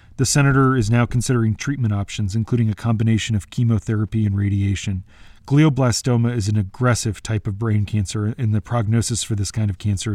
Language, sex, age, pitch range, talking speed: English, male, 40-59, 105-120 Hz, 175 wpm